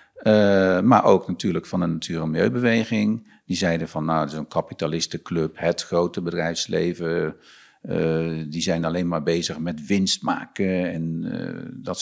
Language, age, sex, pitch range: Dutch, 50-69, male, 85-105 Hz